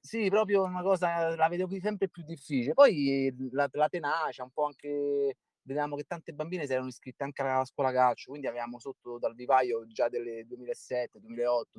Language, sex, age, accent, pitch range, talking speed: Italian, male, 30-49, native, 115-145 Hz, 190 wpm